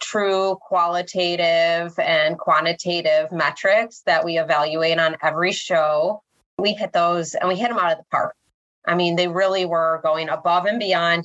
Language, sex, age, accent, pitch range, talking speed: English, female, 30-49, American, 170-205 Hz, 165 wpm